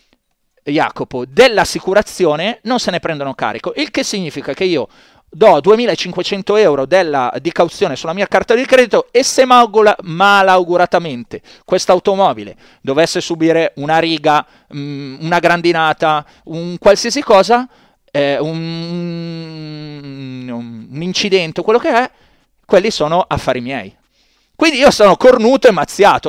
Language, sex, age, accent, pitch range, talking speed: Italian, male, 30-49, native, 145-205 Hz, 125 wpm